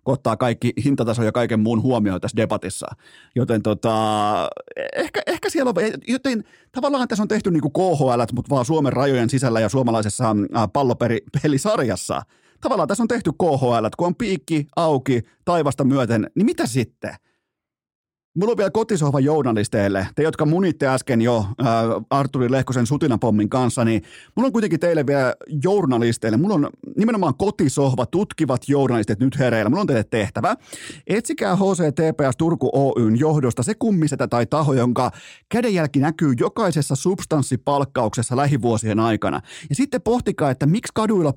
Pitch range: 120-180 Hz